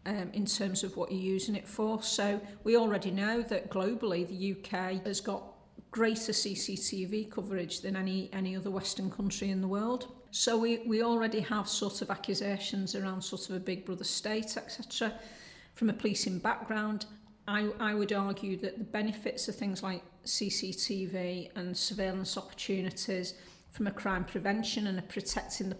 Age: 40-59